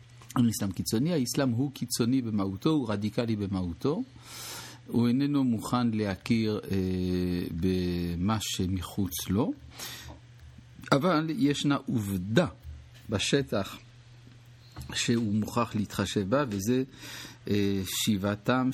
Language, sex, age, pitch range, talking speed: English, male, 50-69, 100-130 Hz, 85 wpm